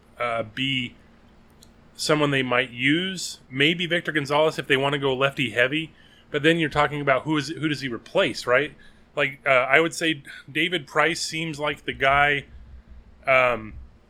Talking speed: 170 wpm